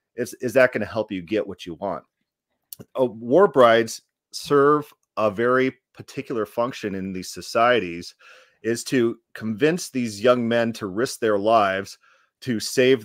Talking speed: 155 wpm